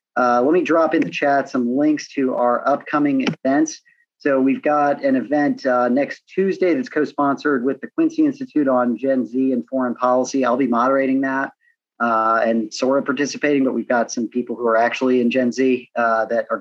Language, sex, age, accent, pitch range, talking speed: English, male, 40-59, American, 120-140 Hz, 200 wpm